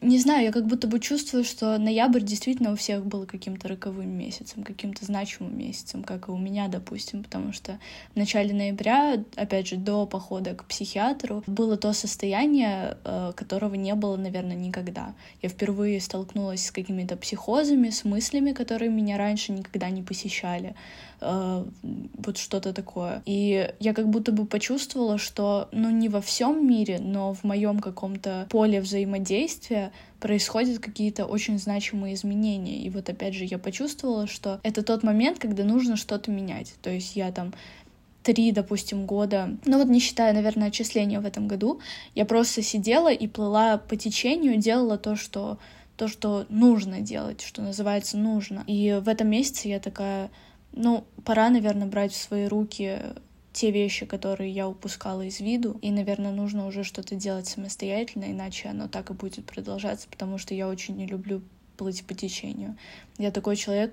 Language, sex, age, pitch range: Russian, female, 10-29, 195-220 Hz